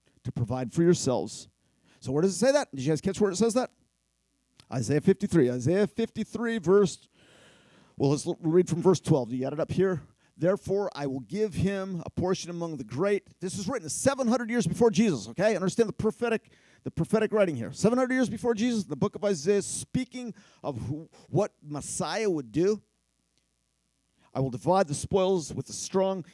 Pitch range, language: 135-195 Hz, English